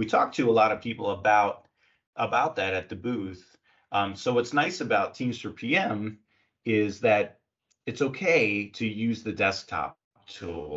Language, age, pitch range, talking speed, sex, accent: English, 30-49, 95-110 Hz, 165 wpm, male, American